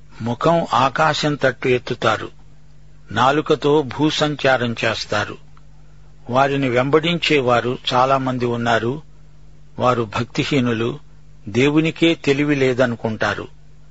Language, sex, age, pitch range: Telugu, male, 60-79, 125-150 Hz